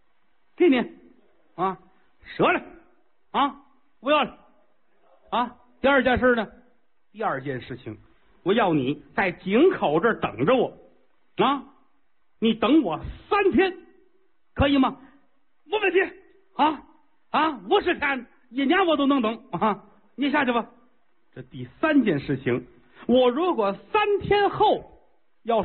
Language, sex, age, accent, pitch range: Chinese, male, 50-69, native, 195-310 Hz